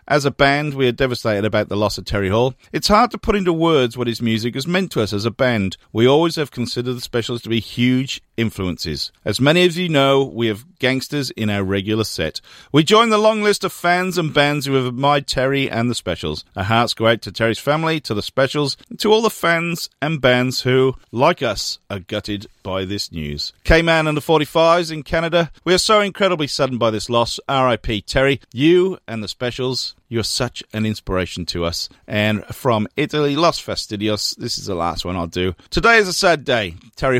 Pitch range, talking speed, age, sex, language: 105-150 Hz, 220 wpm, 40-59, male, English